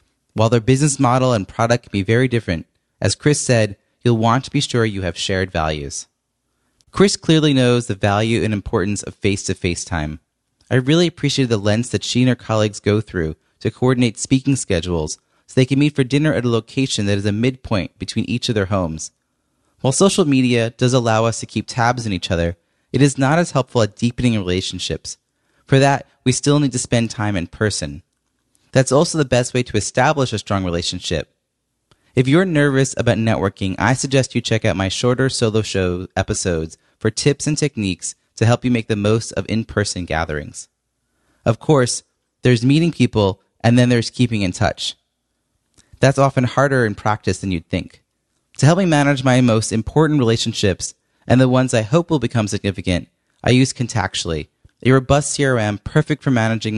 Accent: American